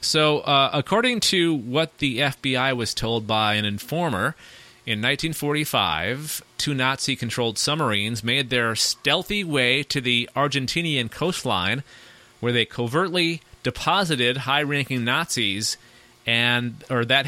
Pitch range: 115-145 Hz